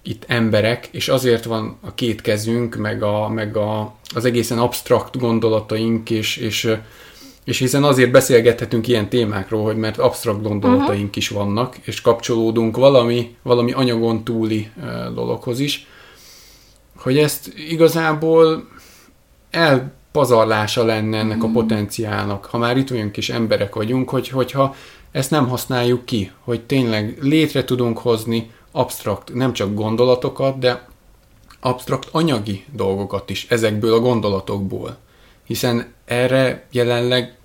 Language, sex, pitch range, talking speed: Hungarian, male, 110-130 Hz, 120 wpm